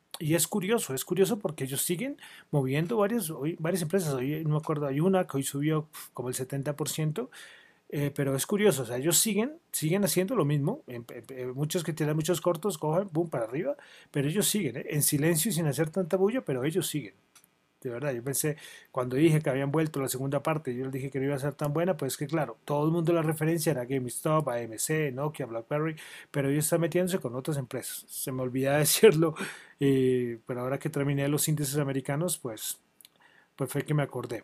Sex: male